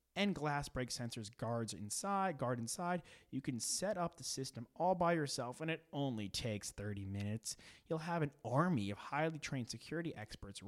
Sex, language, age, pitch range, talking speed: male, English, 30-49, 110-140 Hz, 180 wpm